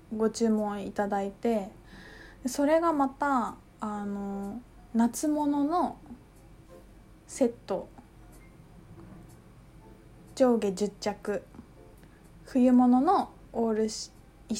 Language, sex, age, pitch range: Japanese, female, 20-39, 210-295 Hz